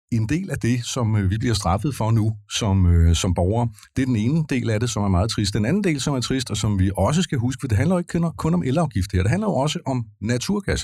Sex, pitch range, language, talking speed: male, 95-120 Hz, Danish, 280 wpm